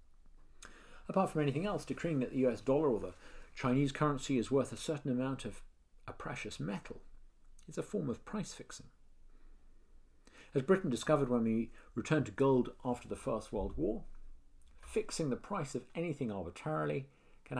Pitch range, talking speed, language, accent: 105-145 Hz, 165 wpm, English, British